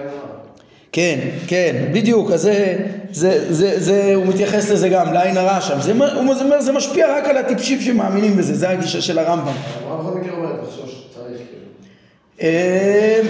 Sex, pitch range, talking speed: male, 185-235 Hz, 140 wpm